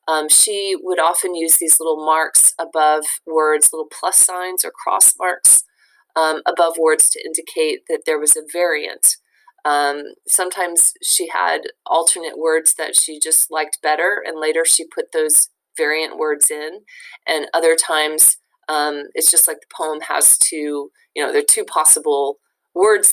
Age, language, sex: 20-39, English, female